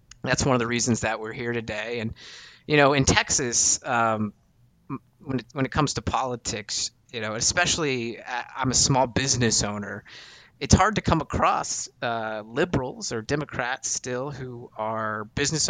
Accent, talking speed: American, 160 wpm